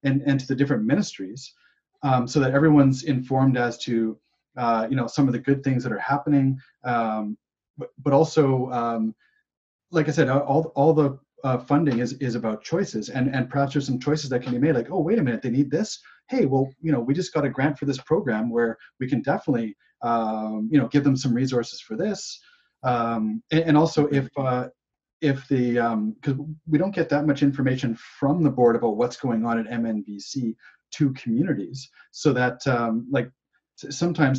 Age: 30-49